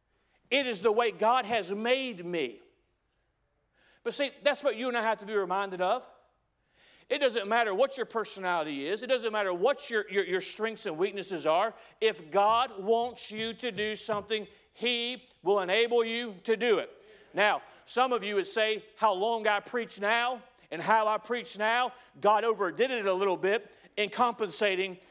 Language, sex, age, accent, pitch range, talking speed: English, male, 40-59, American, 195-245 Hz, 180 wpm